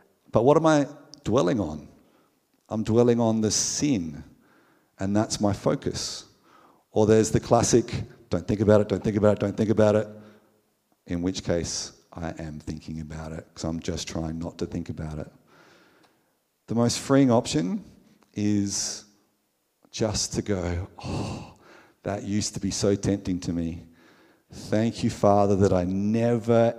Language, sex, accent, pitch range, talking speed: English, male, Australian, 100-120 Hz, 160 wpm